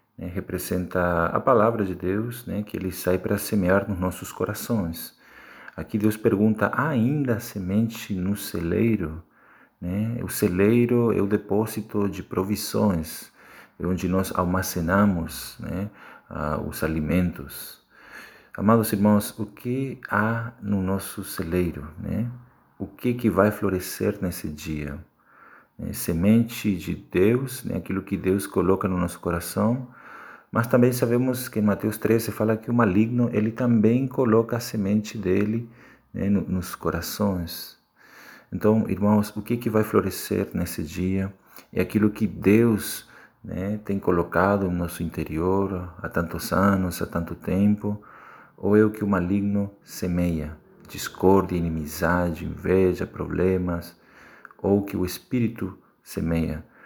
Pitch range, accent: 90-110 Hz, Brazilian